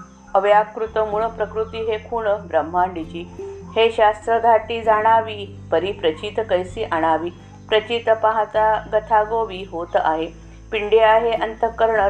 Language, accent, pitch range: Marathi, native, 170-225 Hz